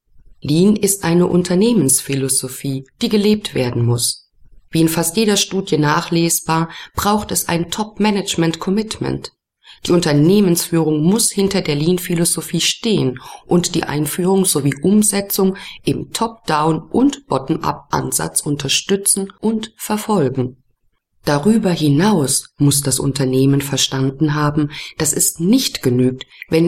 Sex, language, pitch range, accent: female, German, 135-190 Hz, German